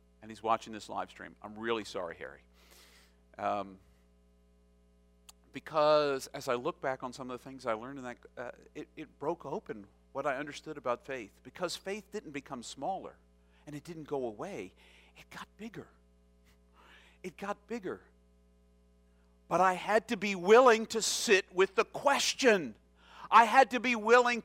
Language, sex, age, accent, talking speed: English, male, 50-69, American, 165 wpm